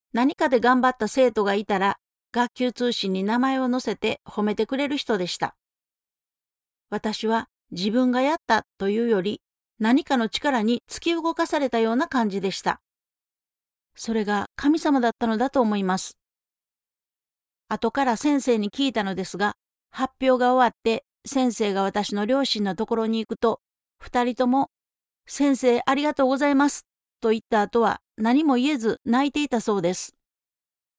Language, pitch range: Japanese, 220-270 Hz